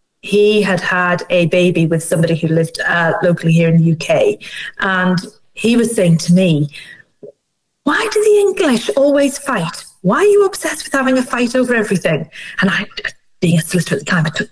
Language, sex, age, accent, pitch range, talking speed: English, female, 40-59, British, 180-220 Hz, 195 wpm